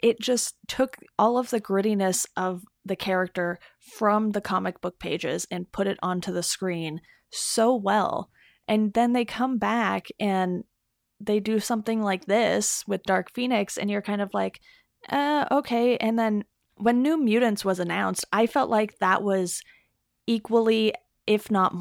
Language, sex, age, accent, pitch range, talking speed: English, female, 30-49, American, 185-220 Hz, 160 wpm